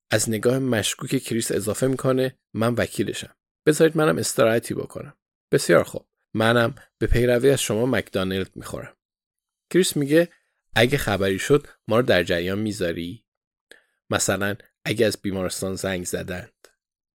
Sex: male